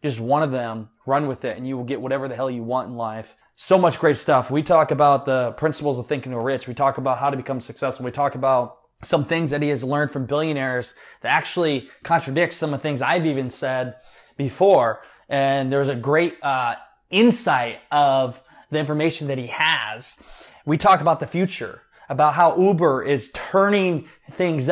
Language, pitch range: English, 130-155 Hz